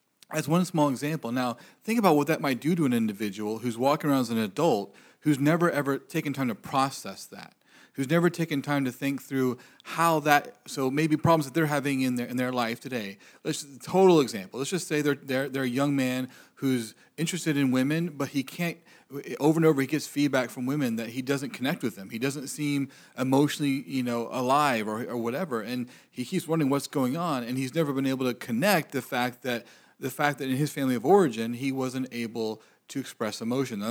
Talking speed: 220 wpm